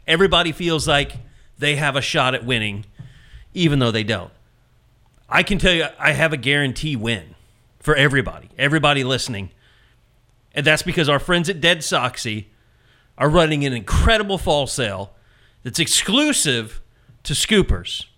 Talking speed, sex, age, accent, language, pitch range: 145 wpm, male, 40-59, American, English, 125-185 Hz